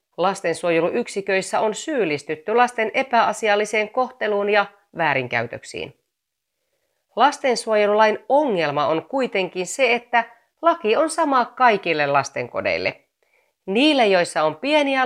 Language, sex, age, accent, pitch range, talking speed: Finnish, female, 30-49, native, 175-250 Hz, 90 wpm